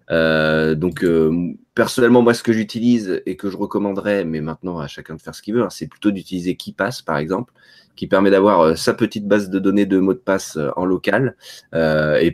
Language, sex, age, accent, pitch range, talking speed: French, male, 30-49, French, 80-100 Hz, 225 wpm